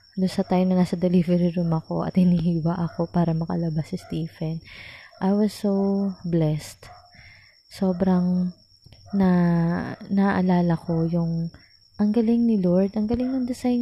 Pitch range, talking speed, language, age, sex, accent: 150-200 Hz, 130 wpm, Filipino, 20-39, female, native